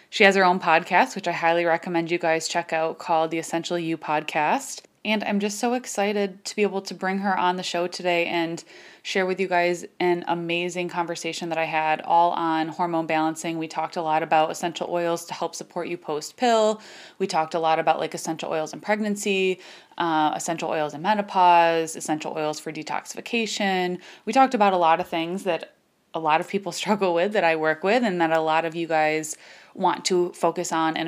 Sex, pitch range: female, 160-185 Hz